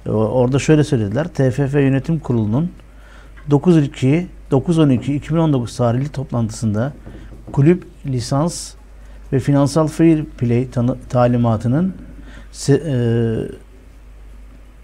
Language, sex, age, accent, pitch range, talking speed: Turkish, male, 60-79, native, 120-150 Hz, 75 wpm